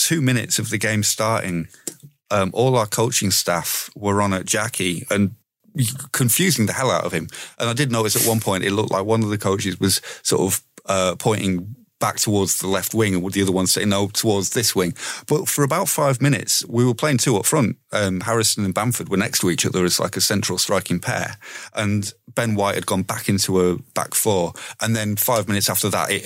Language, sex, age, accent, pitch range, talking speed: English, male, 30-49, British, 95-115 Hz, 225 wpm